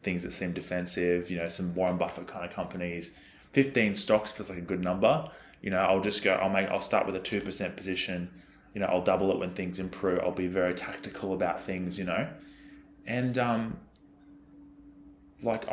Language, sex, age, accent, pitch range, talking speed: English, male, 20-39, Australian, 90-105 Hz, 200 wpm